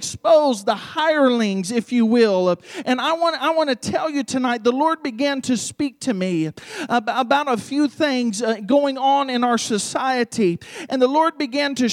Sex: male